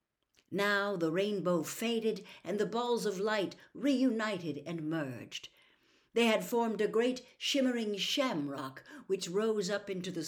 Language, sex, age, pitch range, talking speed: English, female, 60-79, 165-230 Hz, 140 wpm